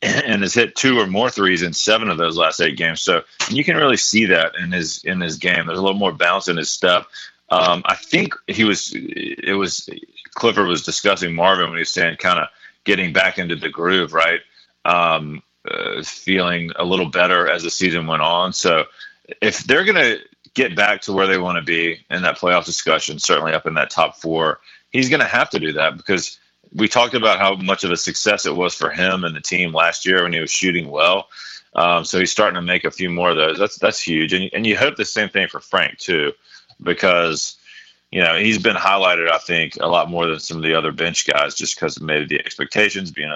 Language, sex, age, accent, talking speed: English, male, 30-49, American, 230 wpm